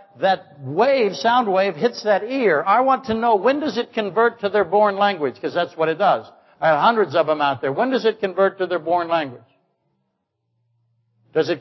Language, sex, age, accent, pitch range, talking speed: English, male, 60-79, American, 155-215 Hz, 210 wpm